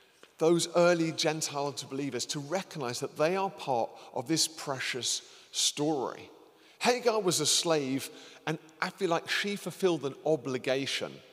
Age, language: 40-59, English